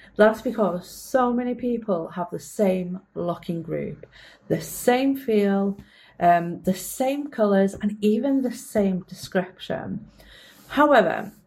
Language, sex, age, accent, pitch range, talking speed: English, female, 40-59, British, 175-220 Hz, 120 wpm